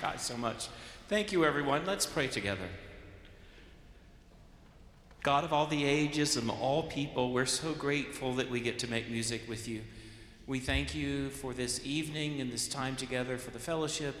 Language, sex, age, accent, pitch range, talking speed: English, male, 40-59, American, 110-130 Hz, 175 wpm